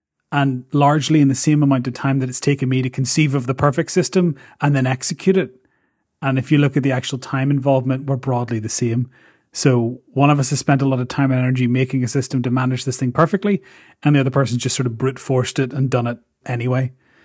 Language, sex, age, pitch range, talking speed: English, male, 30-49, 125-145 Hz, 240 wpm